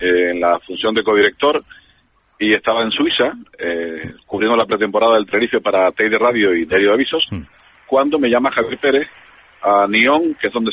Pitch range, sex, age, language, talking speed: 105-140 Hz, male, 40-59, Spanish, 175 wpm